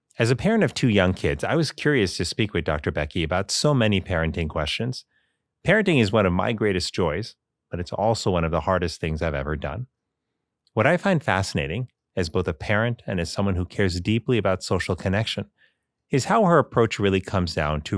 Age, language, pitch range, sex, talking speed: 30-49, English, 85-115 Hz, male, 210 wpm